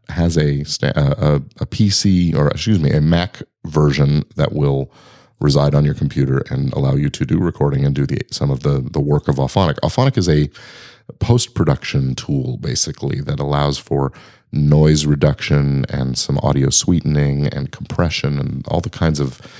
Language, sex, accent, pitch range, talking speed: English, male, American, 70-80 Hz, 170 wpm